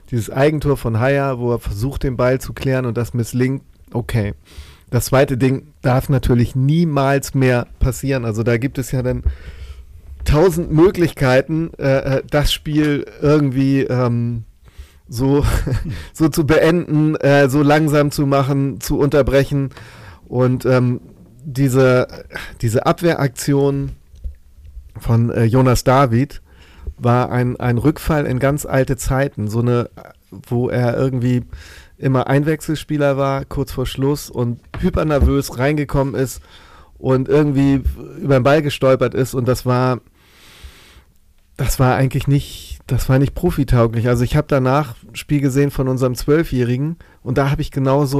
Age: 40-59